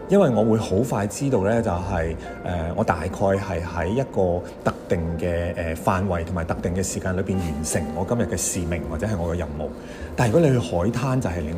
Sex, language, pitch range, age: male, Chinese, 85-120 Hz, 30-49